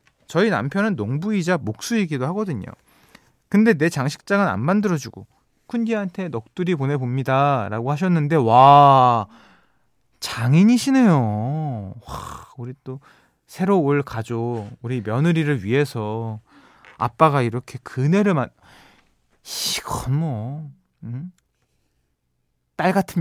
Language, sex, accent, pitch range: Korean, male, native, 110-170 Hz